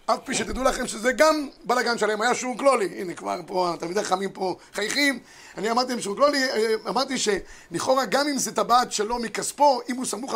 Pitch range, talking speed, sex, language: 210-265 Hz, 195 wpm, male, Hebrew